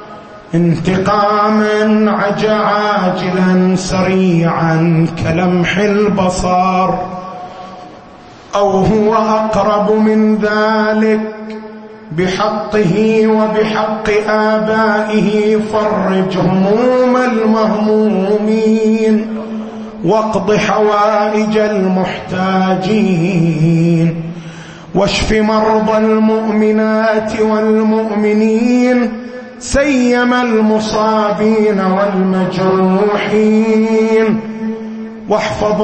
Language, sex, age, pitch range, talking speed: Arabic, male, 30-49, 185-215 Hz, 45 wpm